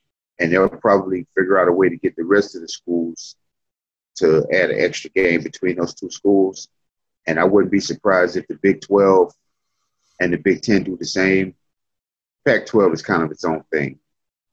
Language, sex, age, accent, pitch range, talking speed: English, male, 30-49, American, 85-100 Hz, 190 wpm